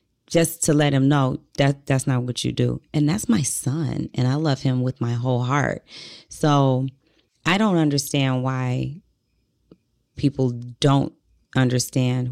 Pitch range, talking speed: 130-150 Hz, 150 wpm